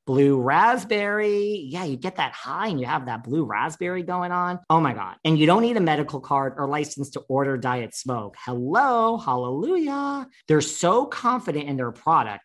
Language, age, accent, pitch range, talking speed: English, 40-59, American, 125-180 Hz, 190 wpm